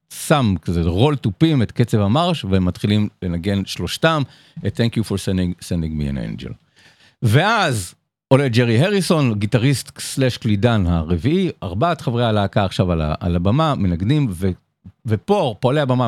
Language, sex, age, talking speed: Hebrew, male, 50-69, 140 wpm